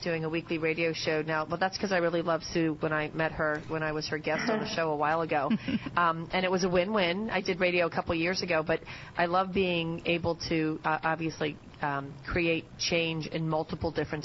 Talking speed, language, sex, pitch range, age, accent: 230 wpm, English, female, 155-175 Hz, 30-49, American